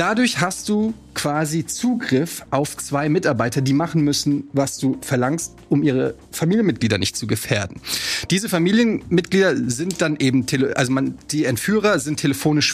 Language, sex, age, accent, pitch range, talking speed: German, male, 30-49, German, 135-185 Hz, 140 wpm